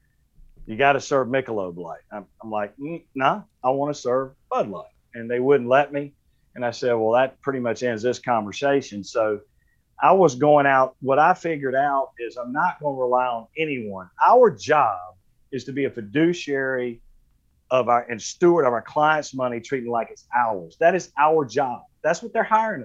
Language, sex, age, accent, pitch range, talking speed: English, male, 40-59, American, 125-170 Hz, 195 wpm